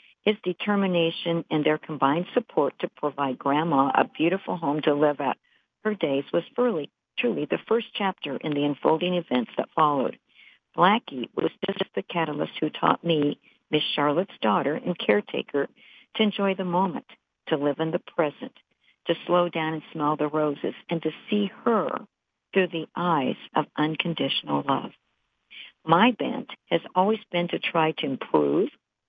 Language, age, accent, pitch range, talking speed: English, 50-69, American, 150-195 Hz, 155 wpm